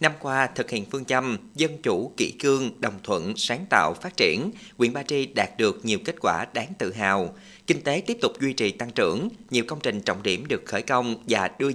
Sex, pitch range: male, 110-145 Hz